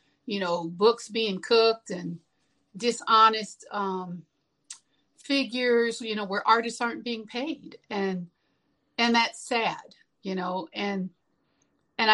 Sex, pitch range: female, 180-225 Hz